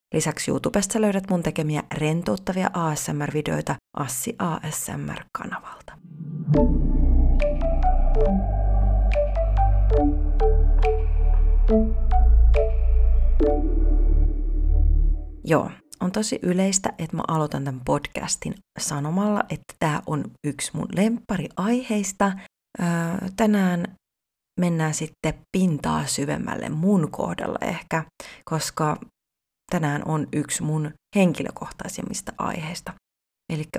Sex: female